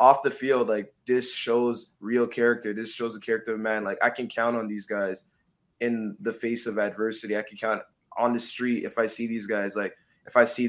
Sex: male